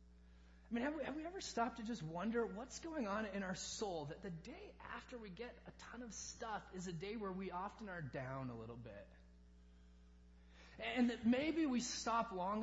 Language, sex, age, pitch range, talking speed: English, male, 20-39, 130-205 Hz, 205 wpm